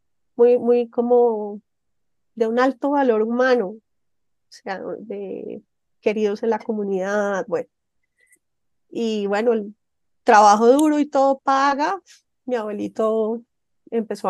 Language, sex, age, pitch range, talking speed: Spanish, female, 30-49, 210-255 Hz, 115 wpm